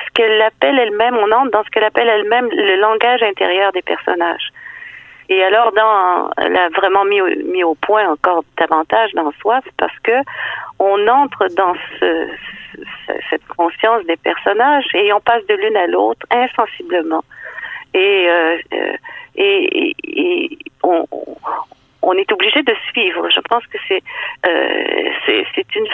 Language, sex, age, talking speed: French, female, 40-59, 160 wpm